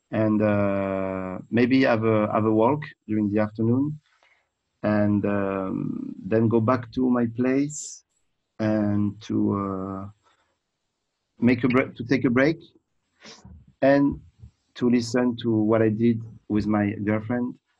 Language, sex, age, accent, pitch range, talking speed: English, male, 40-59, French, 105-120 Hz, 130 wpm